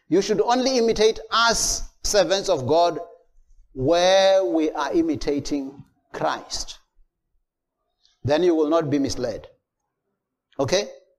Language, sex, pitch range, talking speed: English, male, 155-260 Hz, 105 wpm